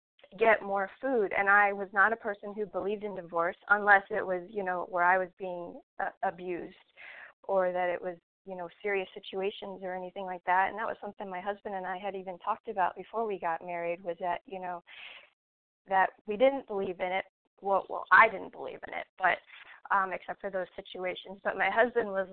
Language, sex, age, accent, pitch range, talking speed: English, female, 20-39, American, 185-230 Hz, 210 wpm